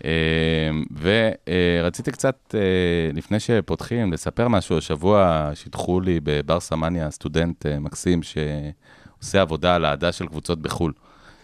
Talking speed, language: 120 wpm, Hebrew